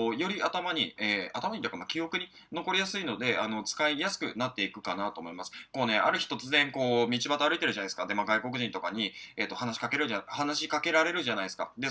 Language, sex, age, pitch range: Japanese, male, 20-39, 110-160 Hz